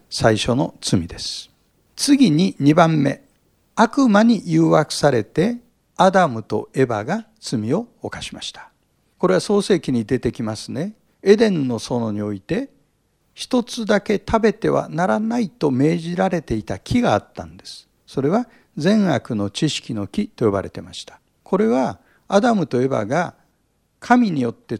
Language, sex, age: Japanese, male, 60-79